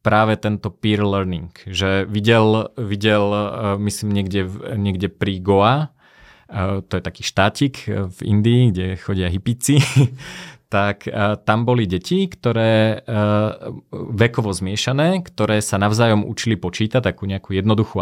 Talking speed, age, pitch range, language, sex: 120 wpm, 30-49, 100-115 Hz, Slovak, male